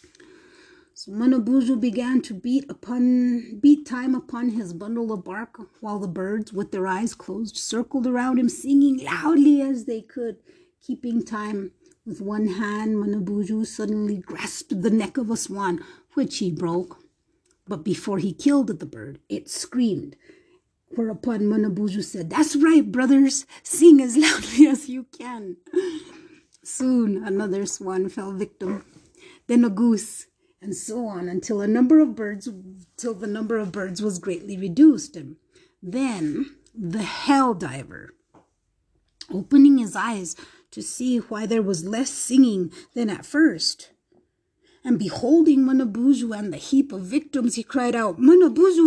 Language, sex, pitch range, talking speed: English, female, 205-295 Hz, 140 wpm